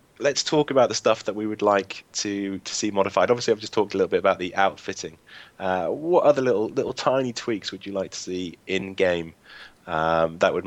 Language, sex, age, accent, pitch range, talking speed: English, male, 20-39, British, 85-100 Hz, 225 wpm